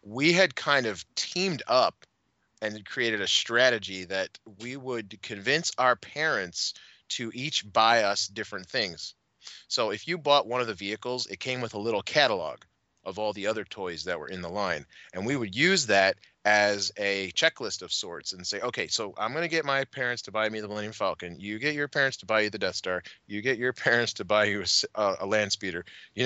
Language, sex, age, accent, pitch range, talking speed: English, male, 30-49, American, 100-130 Hz, 215 wpm